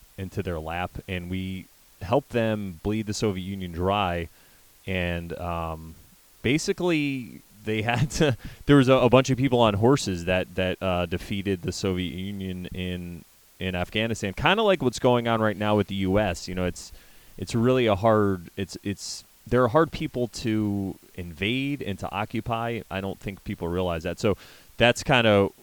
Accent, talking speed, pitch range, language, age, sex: American, 180 wpm, 90-110 Hz, English, 30-49, male